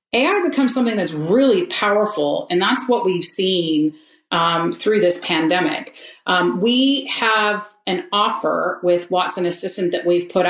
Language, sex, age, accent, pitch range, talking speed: English, female, 30-49, American, 175-210 Hz, 150 wpm